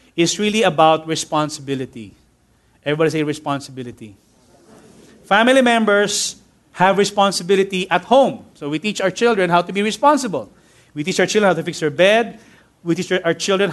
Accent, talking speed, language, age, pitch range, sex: Filipino, 155 wpm, English, 30-49, 165-215 Hz, male